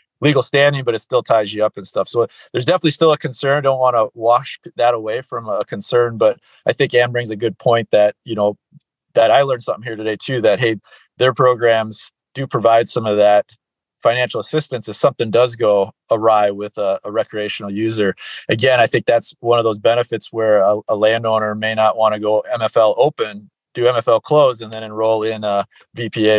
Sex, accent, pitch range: male, American, 110-130 Hz